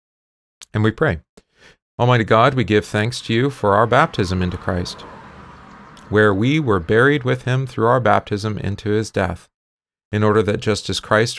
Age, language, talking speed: 40-59, English, 175 wpm